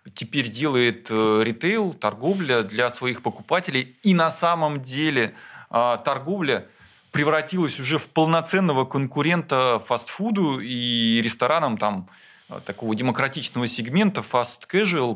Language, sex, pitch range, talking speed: Russian, male, 120-175 Hz, 100 wpm